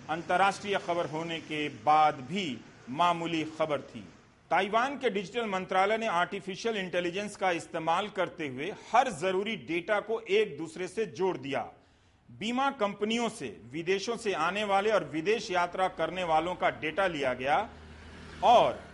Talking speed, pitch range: 145 wpm, 165-205 Hz